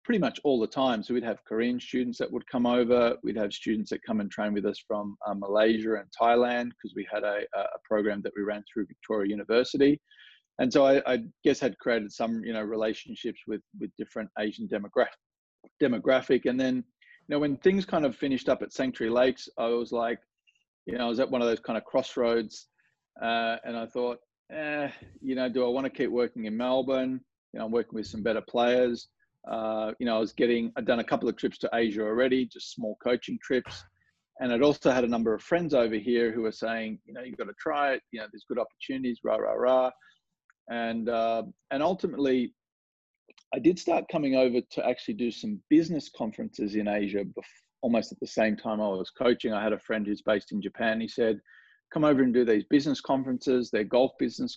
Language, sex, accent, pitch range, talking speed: English, male, Australian, 110-130 Hz, 220 wpm